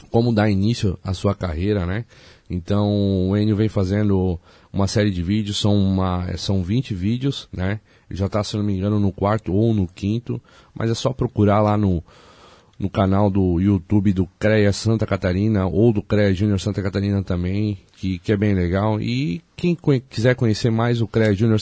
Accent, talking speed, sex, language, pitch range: Brazilian, 185 wpm, male, Portuguese, 95-115 Hz